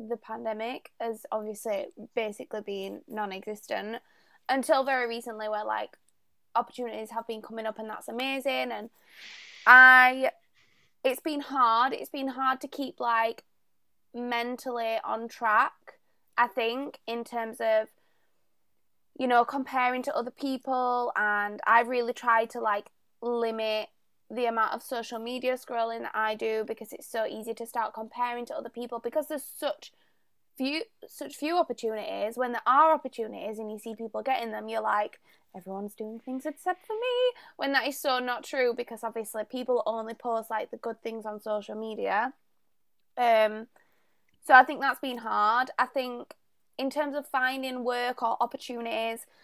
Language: English